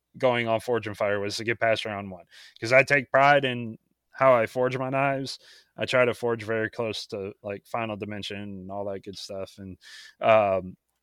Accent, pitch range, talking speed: American, 105-125 Hz, 200 wpm